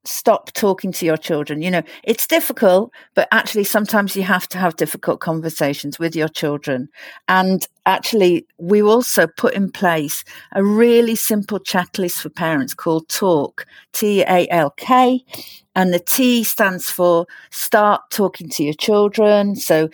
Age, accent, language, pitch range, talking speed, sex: 50-69, British, English, 165-210 Hz, 145 wpm, female